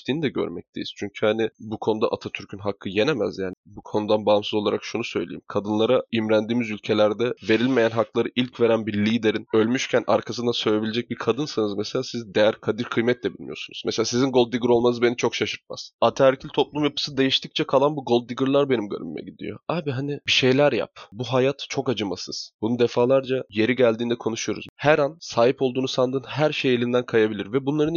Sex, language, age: male, Turkish, 20-39